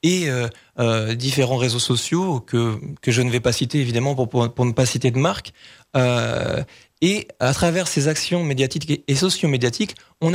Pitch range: 130-175 Hz